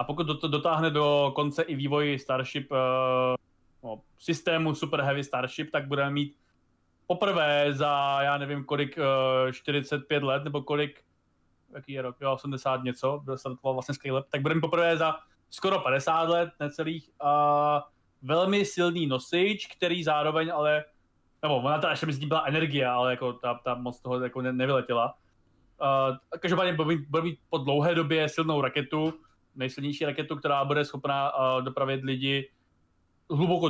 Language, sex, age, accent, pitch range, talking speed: Czech, male, 20-39, native, 130-160 Hz, 160 wpm